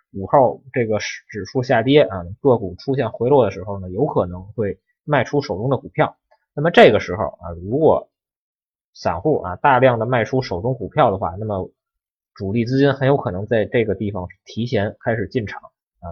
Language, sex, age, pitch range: Chinese, male, 20-39, 100-140 Hz